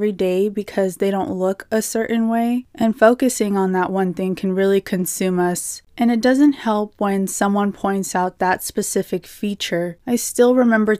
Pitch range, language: 185-215 Hz, English